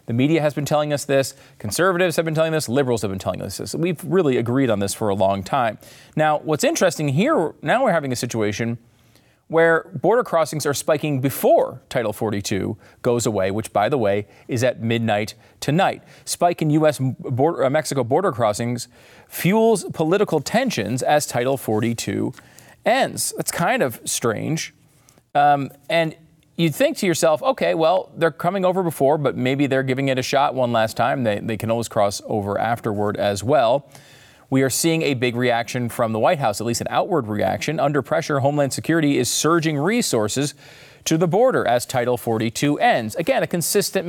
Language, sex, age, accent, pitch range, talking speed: English, male, 40-59, American, 115-160 Hz, 180 wpm